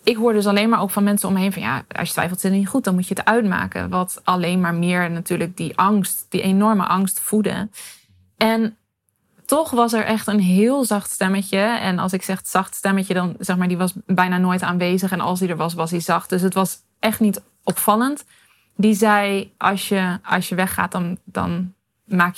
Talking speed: 225 wpm